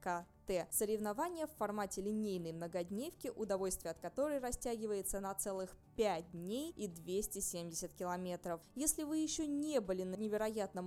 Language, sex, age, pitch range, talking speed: Russian, female, 20-39, 185-245 Hz, 125 wpm